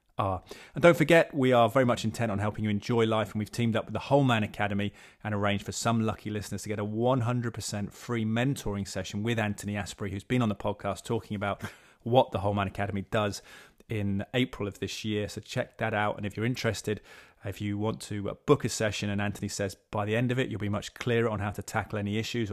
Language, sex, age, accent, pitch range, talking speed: English, male, 30-49, British, 100-115 Hz, 235 wpm